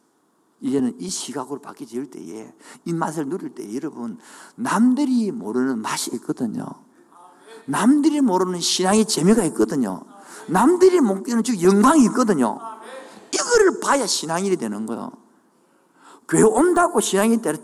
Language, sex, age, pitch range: Korean, male, 50-69, 215-315 Hz